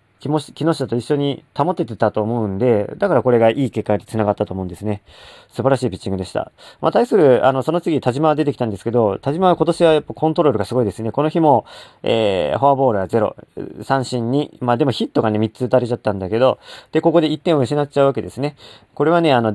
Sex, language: male, Japanese